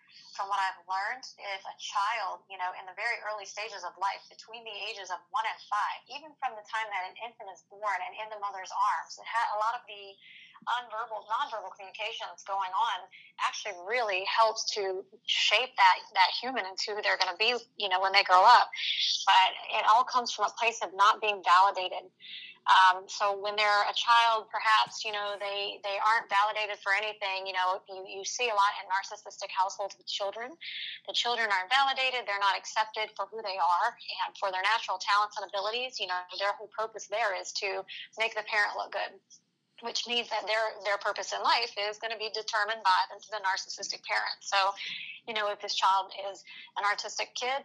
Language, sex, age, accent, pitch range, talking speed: English, female, 20-39, American, 195-220 Hz, 210 wpm